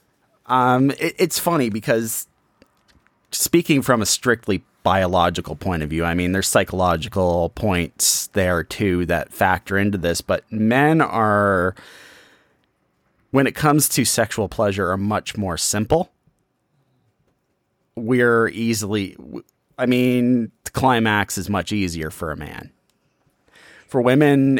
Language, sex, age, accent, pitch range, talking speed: English, male, 30-49, American, 90-115 Hz, 120 wpm